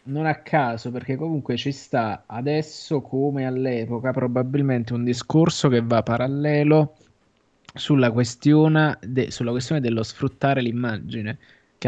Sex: male